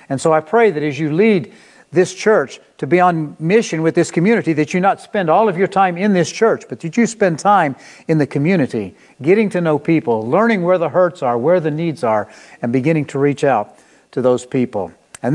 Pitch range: 150-190 Hz